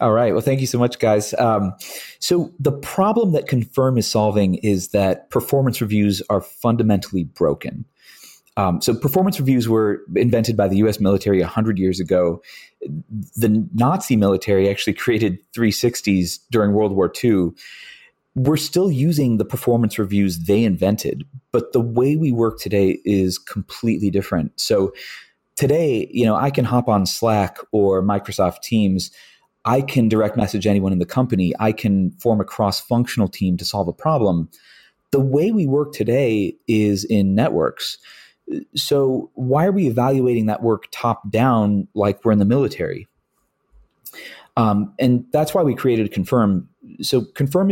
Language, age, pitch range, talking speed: English, 30-49, 100-130 Hz, 155 wpm